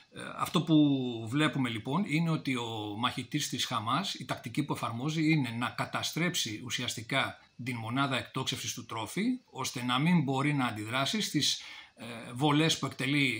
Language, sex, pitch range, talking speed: Greek, male, 120-150 Hz, 150 wpm